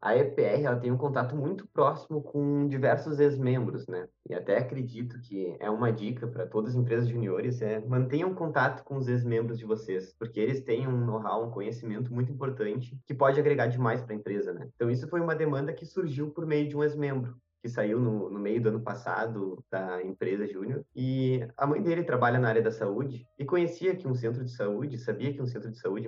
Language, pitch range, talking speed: Portuguese, 115-145 Hz, 215 wpm